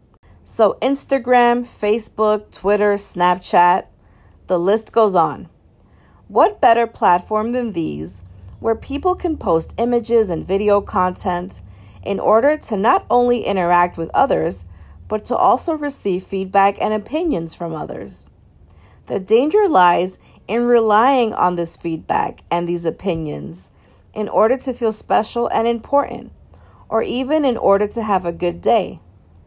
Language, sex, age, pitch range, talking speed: English, female, 40-59, 175-235 Hz, 135 wpm